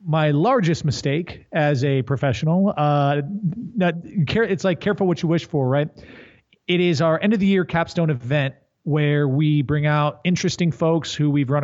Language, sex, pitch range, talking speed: English, male, 135-165 Hz, 180 wpm